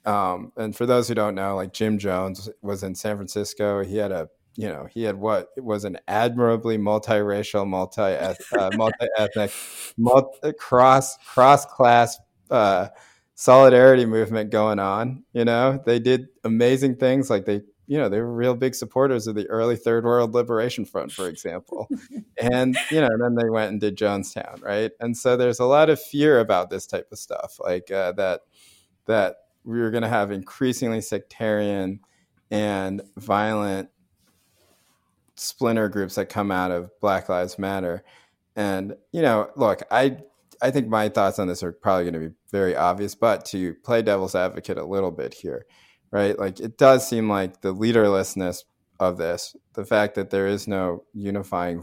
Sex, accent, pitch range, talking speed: male, American, 95-120 Hz, 165 wpm